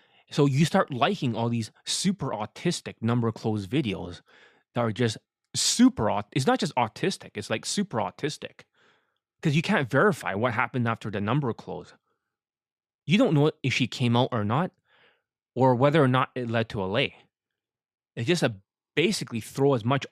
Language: English